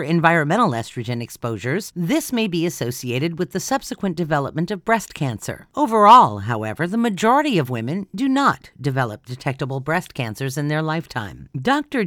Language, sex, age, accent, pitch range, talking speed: English, female, 50-69, American, 135-205 Hz, 150 wpm